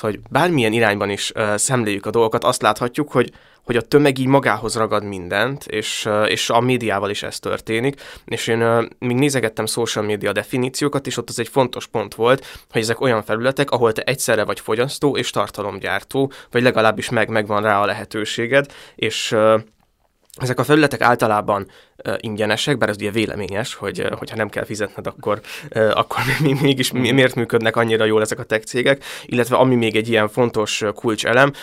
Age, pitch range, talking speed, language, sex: 20-39, 105-125 Hz, 175 wpm, Hungarian, male